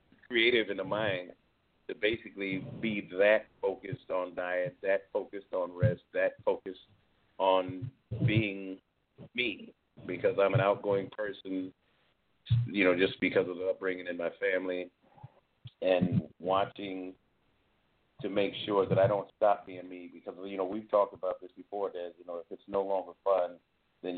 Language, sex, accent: English, male, American